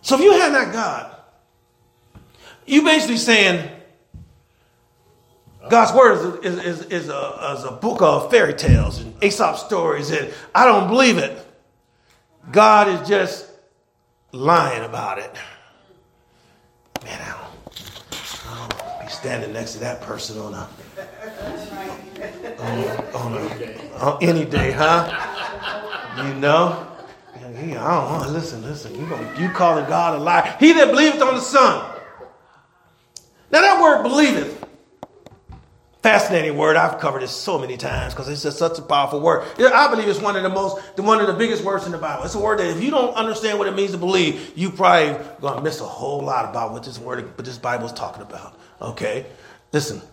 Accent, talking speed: American, 165 wpm